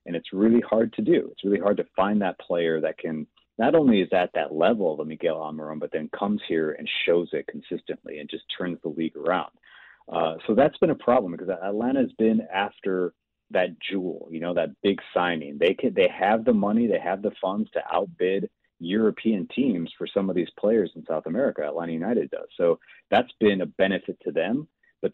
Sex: male